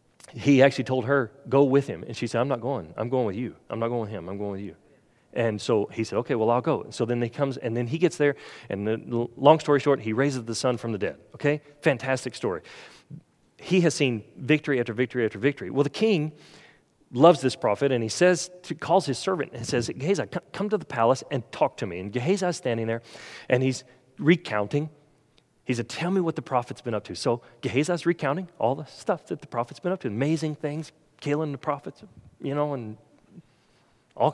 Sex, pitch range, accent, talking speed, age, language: male, 120-150 Hz, American, 225 wpm, 40-59, English